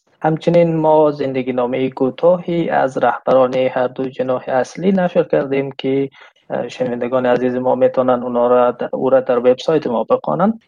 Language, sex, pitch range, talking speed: Persian, male, 125-155 Hz, 130 wpm